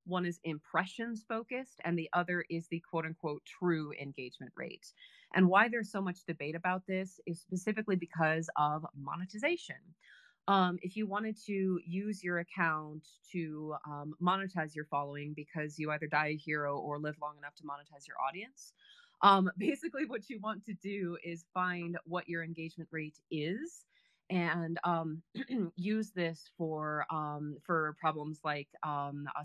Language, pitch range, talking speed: English, 155-195 Hz, 155 wpm